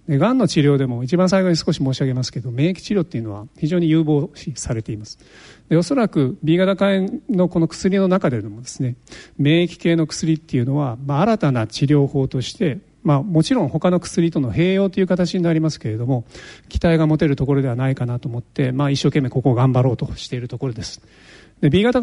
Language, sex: Japanese, male